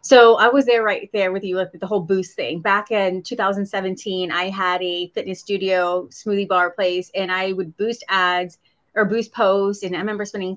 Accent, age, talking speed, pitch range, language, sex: American, 30-49, 205 wpm, 185-220 Hz, English, female